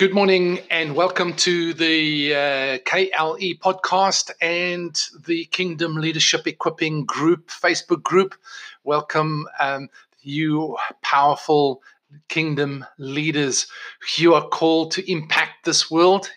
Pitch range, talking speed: 150-185 Hz, 110 wpm